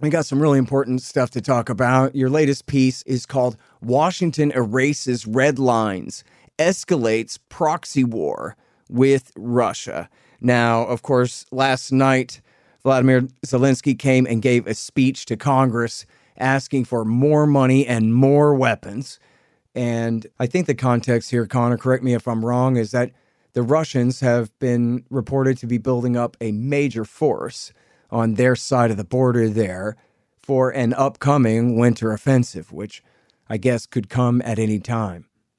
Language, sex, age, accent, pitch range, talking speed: English, male, 40-59, American, 115-130 Hz, 150 wpm